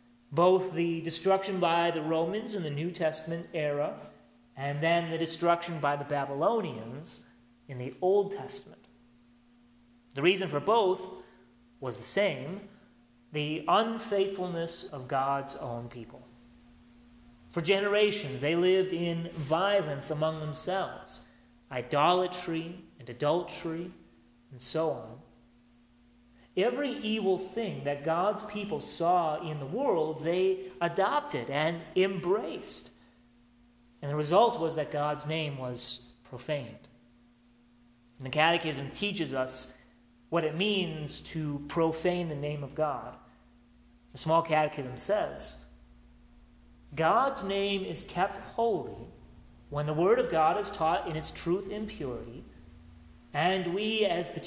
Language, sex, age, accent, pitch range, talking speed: English, male, 30-49, American, 120-180 Hz, 120 wpm